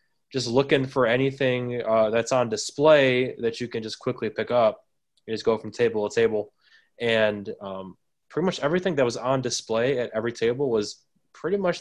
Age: 20-39